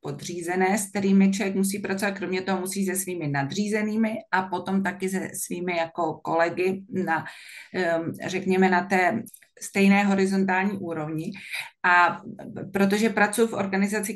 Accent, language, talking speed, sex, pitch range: native, Czech, 130 wpm, female, 170-205 Hz